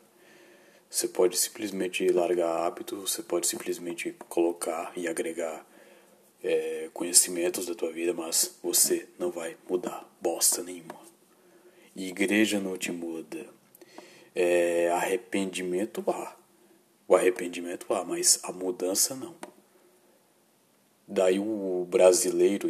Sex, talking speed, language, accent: male, 100 wpm, Portuguese, Brazilian